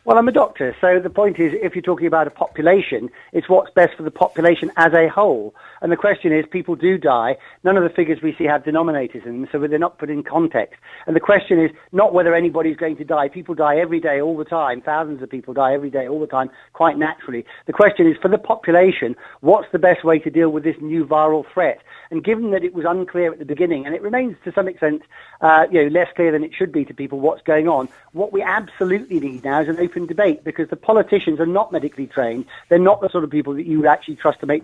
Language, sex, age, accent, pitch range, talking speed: English, male, 40-59, British, 150-180 Hz, 260 wpm